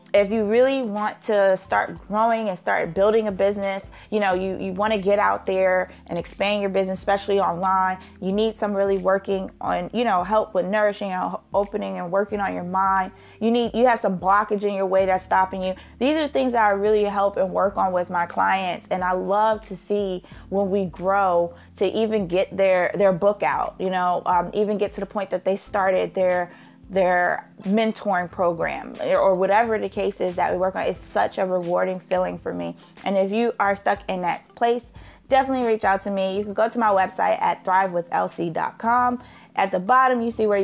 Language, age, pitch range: English, 20-39, 190-220 Hz